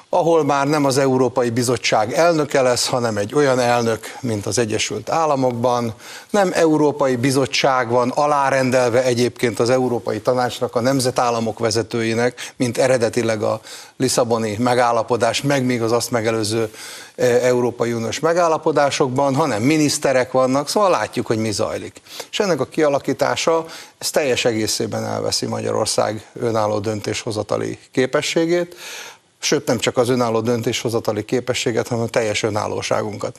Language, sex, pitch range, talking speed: Hungarian, male, 115-140 Hz, 130 wpm